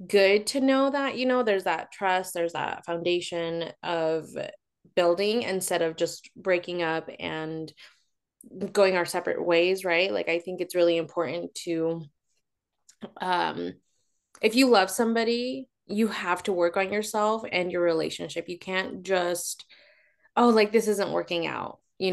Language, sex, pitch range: English, female, 170-225 Hz